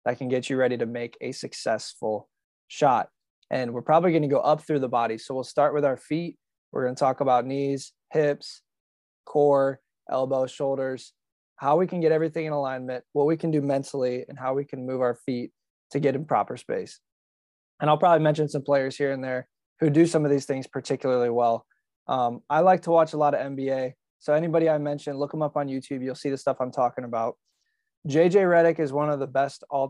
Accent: American